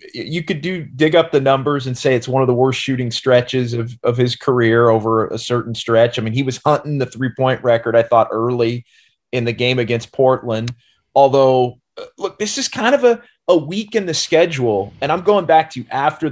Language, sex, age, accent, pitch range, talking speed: English, male, 30-49, American, 125-175 Hz, 215 wpm